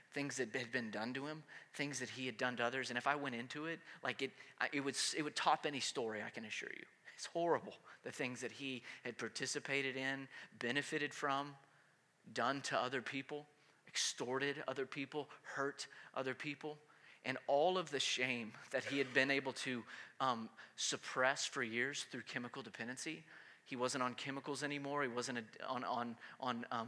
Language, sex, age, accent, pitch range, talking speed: English, male, 30-49, American, 125-150 Hz, 180 wpm